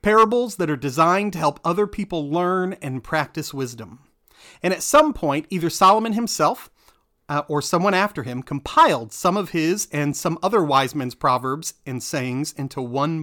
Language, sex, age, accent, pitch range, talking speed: English, male, 40-59, American, 145-195 Hz, 170 wpm